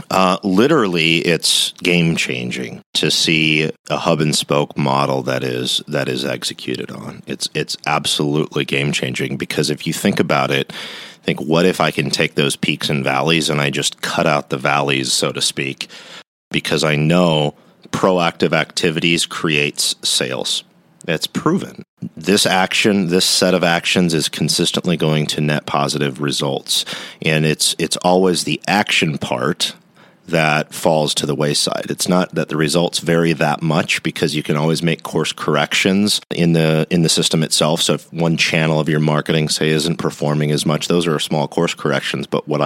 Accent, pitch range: American, 75-80 Hz